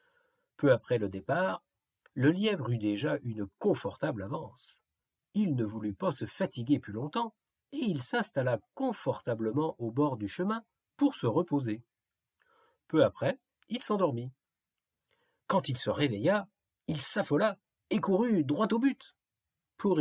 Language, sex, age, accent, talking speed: French, male, 50-69, French, 140 wpm